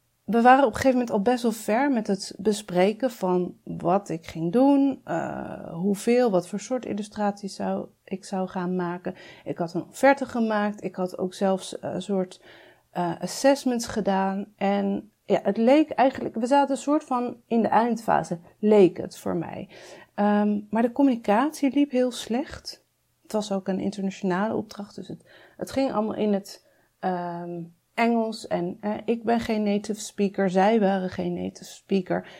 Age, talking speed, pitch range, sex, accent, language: 40-59, 165 wpm, 195-250 Hz, female, Dutch, Dutch